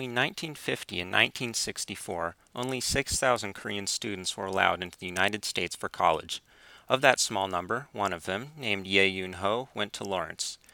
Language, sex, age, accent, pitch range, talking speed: English, male, 30-49, American, 95-120 Hz, 160 wpm